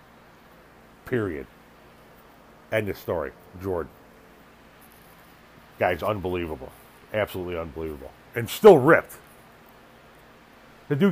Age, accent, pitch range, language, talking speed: 40-59, American, 95-120 Hz, English, 75 wpm